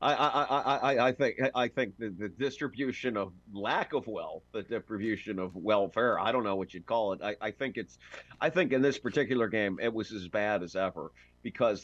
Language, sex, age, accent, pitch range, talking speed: English, male, 50-69, American, 90-120 Hz, 215 wpm